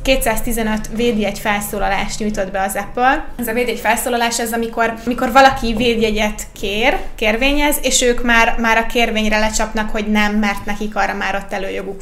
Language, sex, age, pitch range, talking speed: Hungarian, female, 20-39, 210-235 Hz, 165 wpm